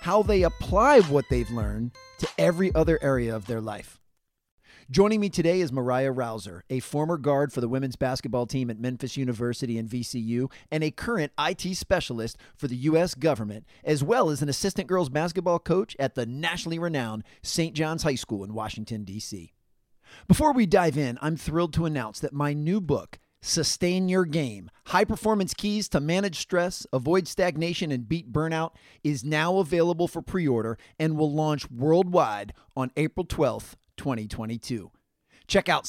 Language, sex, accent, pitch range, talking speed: English, male, American, 135-170 Hz, 170 wpm